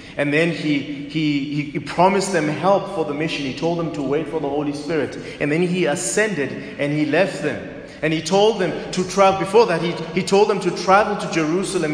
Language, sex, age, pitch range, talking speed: English, male, 30-49, 130-180 Hz, 220 wpm